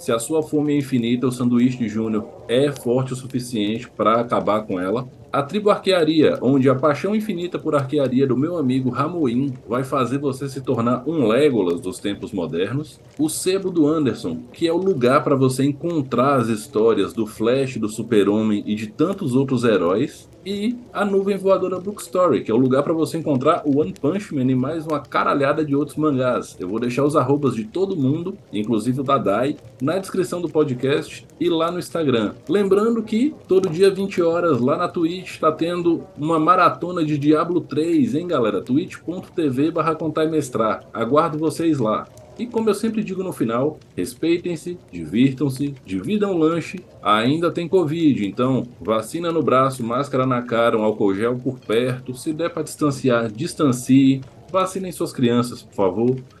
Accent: Brazilian